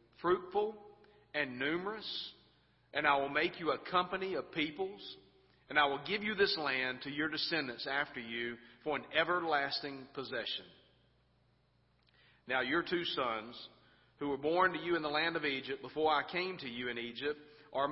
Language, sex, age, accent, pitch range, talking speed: English, male, 40-59, American, 130-160 Hz, 165 wpm